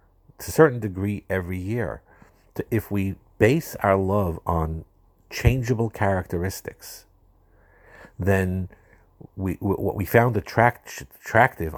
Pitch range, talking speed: 85-105 Hz, 100 wpm